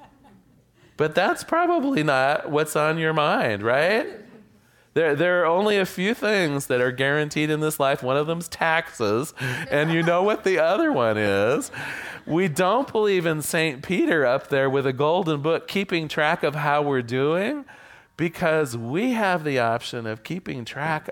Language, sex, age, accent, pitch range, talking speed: English, male, 40-59, American, 125-180 Hz, 170 wpm